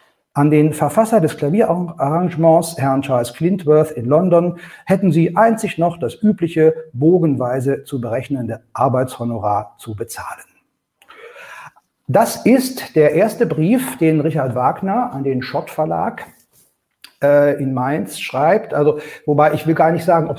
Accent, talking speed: German, 135 wpm